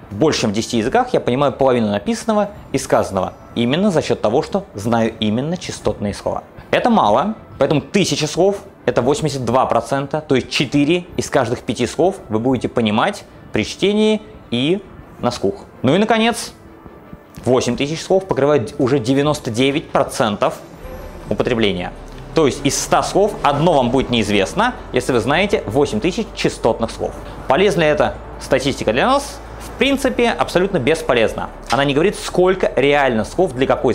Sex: male